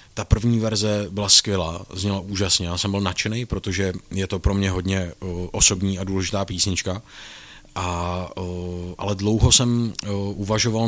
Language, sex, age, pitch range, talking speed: Czech, male, 30-49, 95-110 Hz, 145 wpm